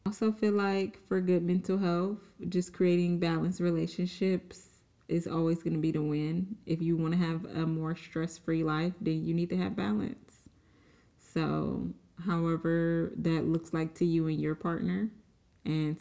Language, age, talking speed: English, 20-39, 165 wpm